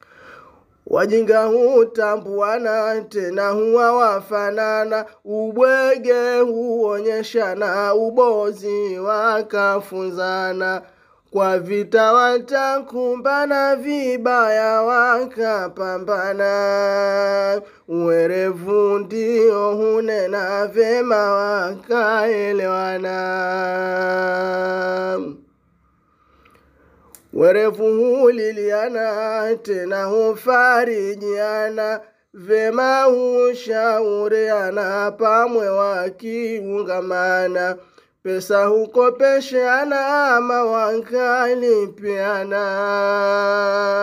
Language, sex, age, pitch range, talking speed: Swahili, male, 20-39, 195-225 Hz, 50 wpm